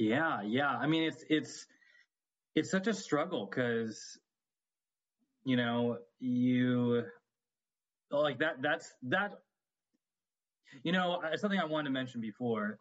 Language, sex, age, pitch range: English, male, 20-39, 110-140 Hz